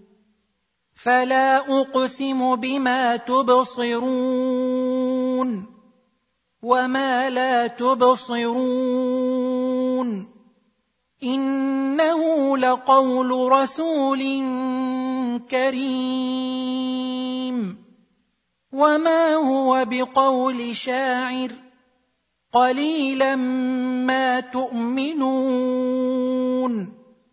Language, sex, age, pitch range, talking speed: Arabic, male, 40-59, 250-260 Hz, 40 wpm